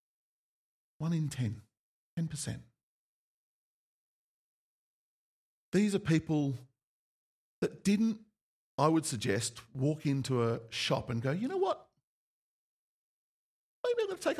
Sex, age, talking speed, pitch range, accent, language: male, 50-69, 110 wpm, 120-170 Hz, Australian, English